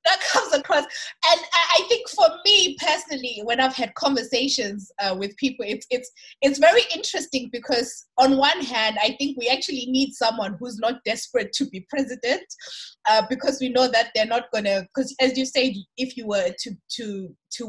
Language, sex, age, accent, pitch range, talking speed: English, female, 20-39, South African, 225-290 Hz, 190 wpm